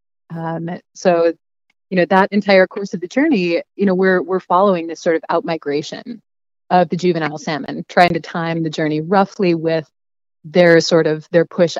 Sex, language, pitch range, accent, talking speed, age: female, English, 160-200 Hz, American, 185 wpm, 30-49